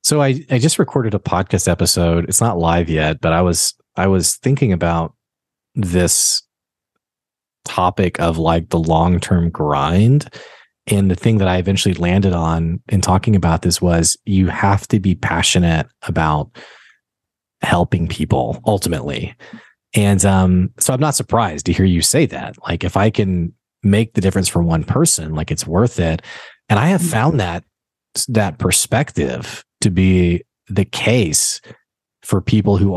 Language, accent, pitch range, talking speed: English, American, 90-110 Hz, 160 wpm